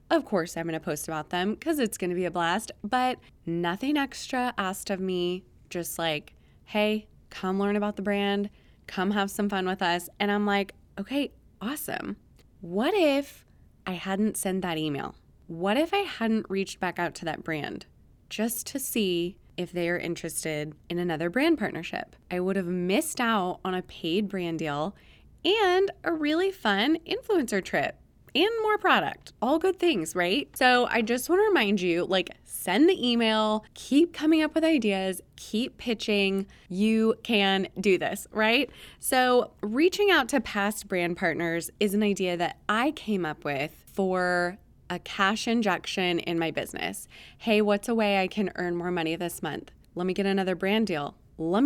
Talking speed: 180 wpm